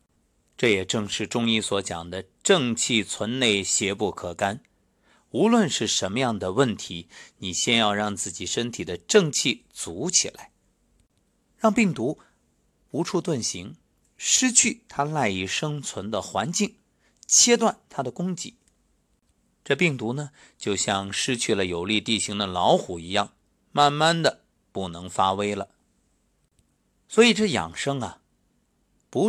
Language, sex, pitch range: Chinese, male, 95-145 Hz